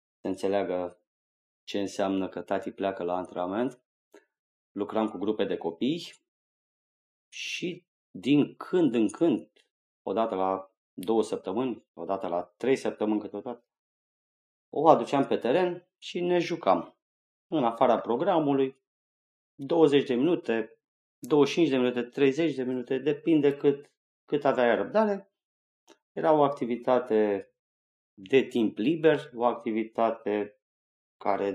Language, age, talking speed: Romanian, 30-49, 115 wpm